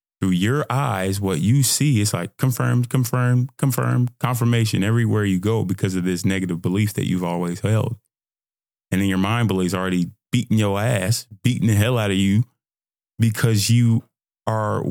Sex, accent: male, American